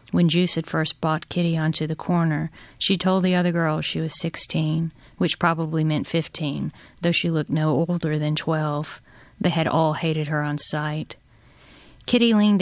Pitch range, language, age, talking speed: 155-170 Hz, English, 40-59, 175 wpm